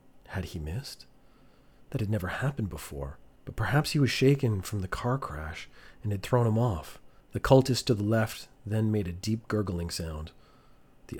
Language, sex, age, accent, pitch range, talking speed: English, male, 40-59, American, 90-120 Hz, 180 wpm